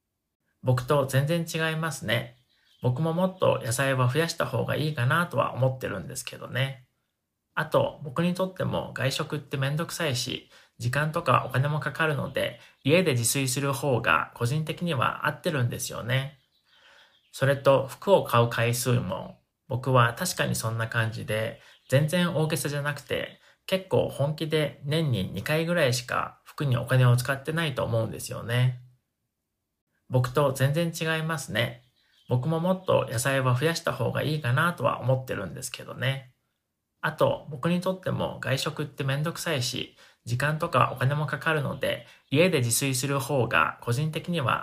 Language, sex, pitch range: Japanese, male, 125-155 Hz